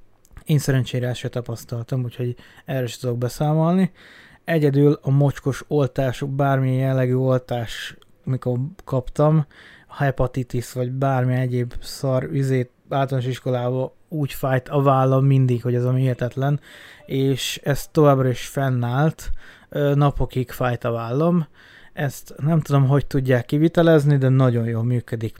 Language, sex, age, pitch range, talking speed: Hungarian, male, 20-39, 120-140 Hz, 130 wpm